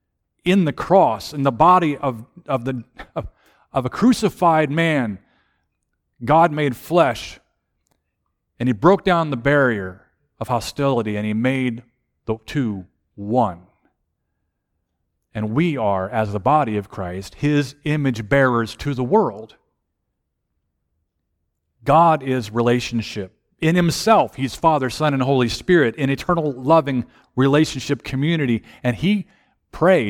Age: 40-59